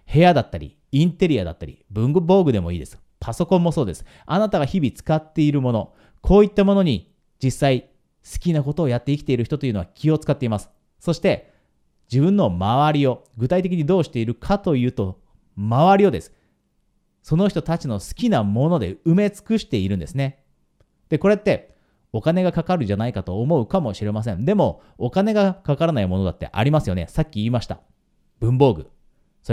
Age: 40-59